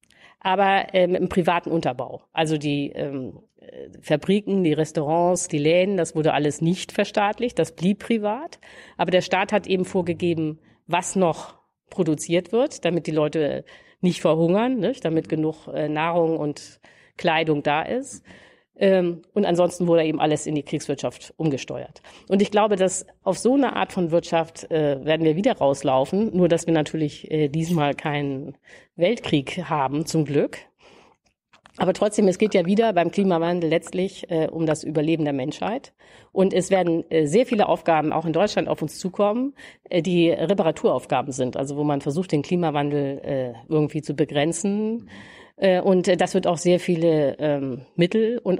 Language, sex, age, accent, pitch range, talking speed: German, female, 50-69, German, 155-185 Hz, 160 wpm